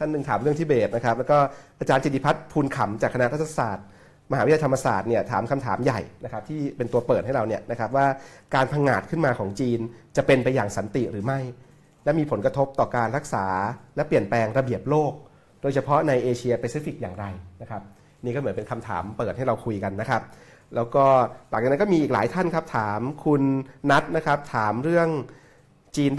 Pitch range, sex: 115-140 Hz, male